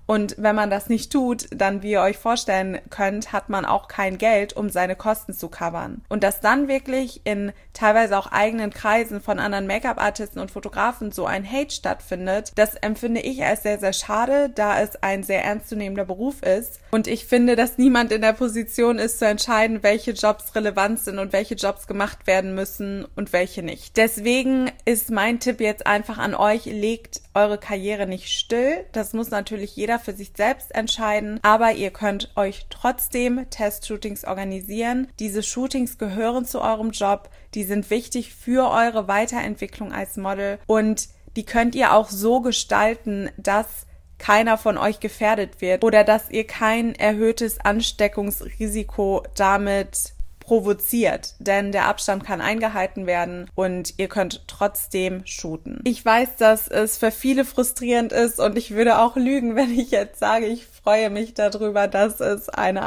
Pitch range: 200-230 Hz